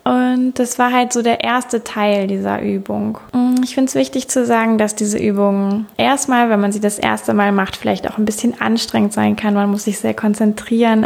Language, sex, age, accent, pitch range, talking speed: German, female, 20-39, German, 165-225 Hz, 210 wpm